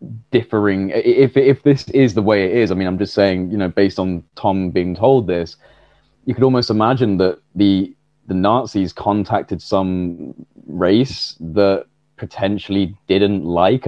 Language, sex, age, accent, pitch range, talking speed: English, male, 20-39, British, 95-115 Hz, 160 wpm